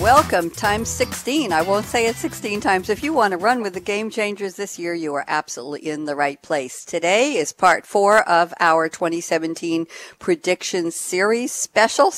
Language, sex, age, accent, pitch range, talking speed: English, female, 60-79, American, 160-215 Hz, 180 wpm